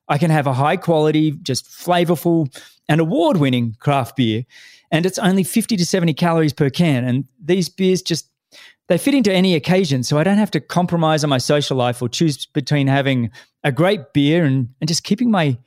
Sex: male